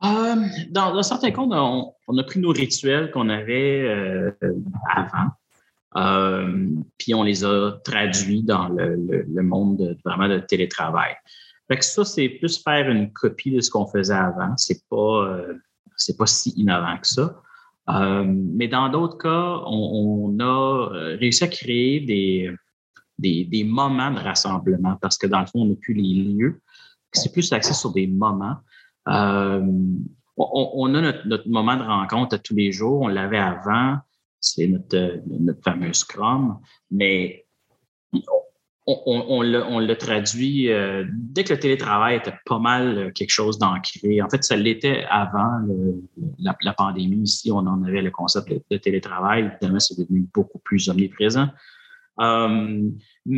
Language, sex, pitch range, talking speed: French, male, 95-135 Hz, 165 wpm